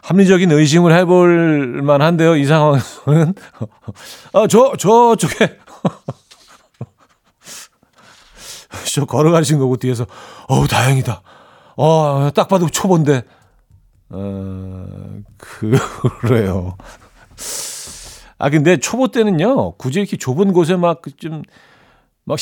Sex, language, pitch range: male, Korean, 115-160 Hz